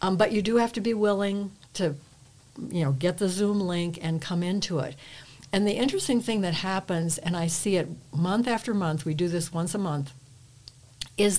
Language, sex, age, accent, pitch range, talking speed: English, female, 60-79, American, 160-205 Hz, 205 wpm